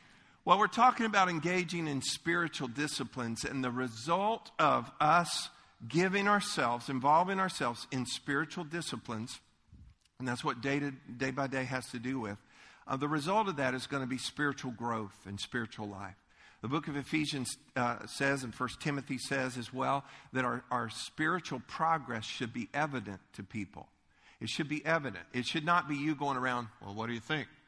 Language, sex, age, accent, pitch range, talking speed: English, male, 50-69, American, 125-155 Hz, 180 wpm